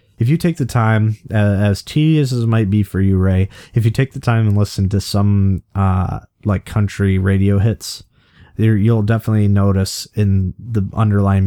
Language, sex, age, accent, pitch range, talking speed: English, male, 20-39, American, 95-115 Hz, 185 wpm